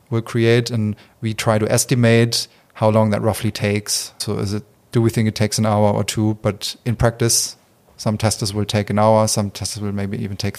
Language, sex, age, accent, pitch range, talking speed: English, male, 30-49, German, 105-115 Hz, 210 wpm